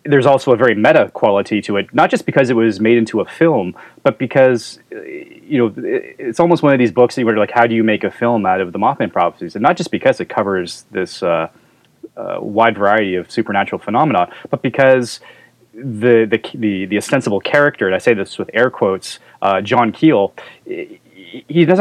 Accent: American